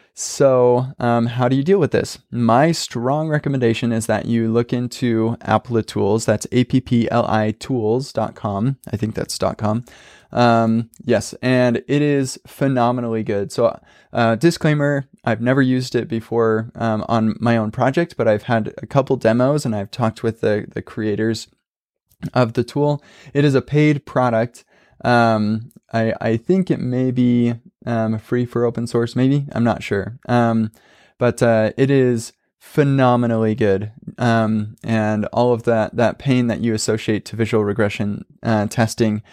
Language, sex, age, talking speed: English, male, 20-39, 155 wpm